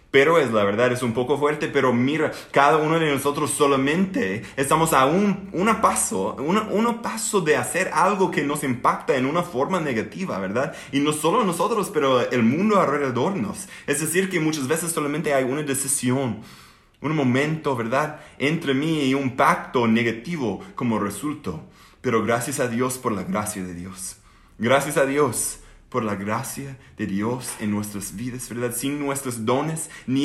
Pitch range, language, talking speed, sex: 120-160 Hz, English, 175 wpm, male